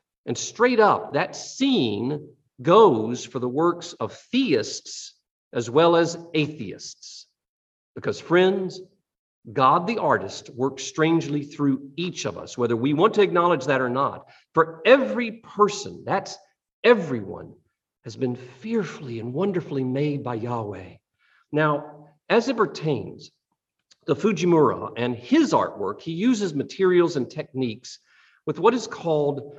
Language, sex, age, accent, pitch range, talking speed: English, male, 50-69, American, 130-190 Hz, 130 wpm